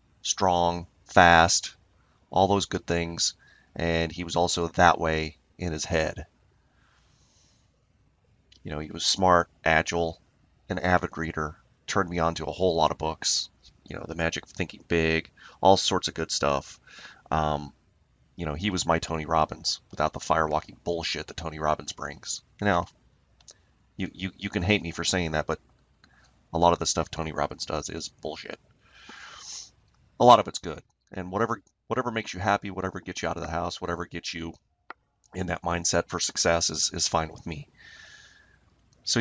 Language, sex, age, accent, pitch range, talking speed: English, male, 30-49, American, 80-95 Hz, 175 wpm